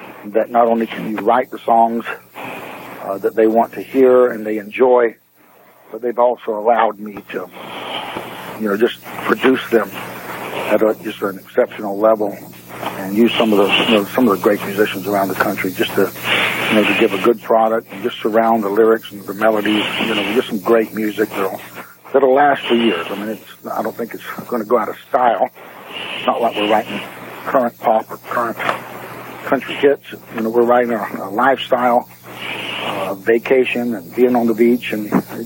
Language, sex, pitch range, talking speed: English, male, 100-120 Hz, 200 wpm